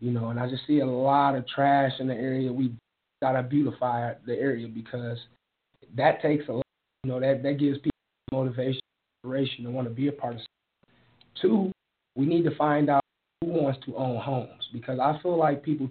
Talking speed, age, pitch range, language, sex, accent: 215 wpm, 30-49, 125-145 Hz, English, male, American